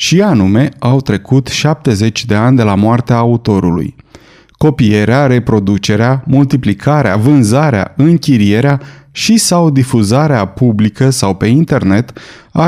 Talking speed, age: 115 wpm, 30-49